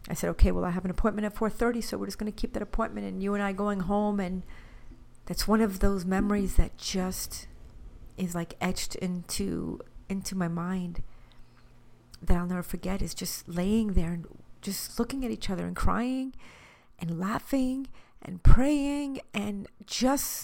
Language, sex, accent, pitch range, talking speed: English, female, American, 185-235 Hz, 180 wpm